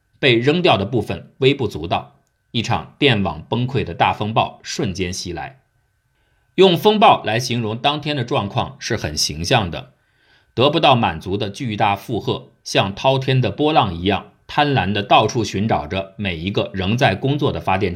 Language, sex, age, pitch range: Chinese, male, 50-69, 95-125 Hz